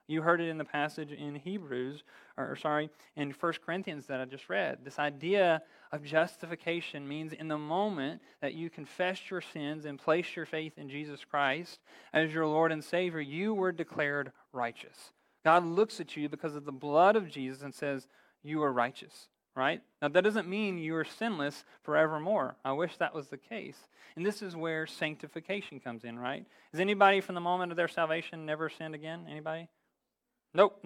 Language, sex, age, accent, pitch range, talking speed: English, male, 40-59, American, 150-185 Hz, 190 wpm